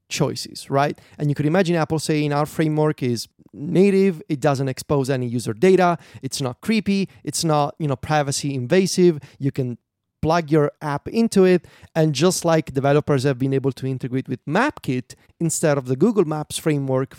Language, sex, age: English, male, 30-49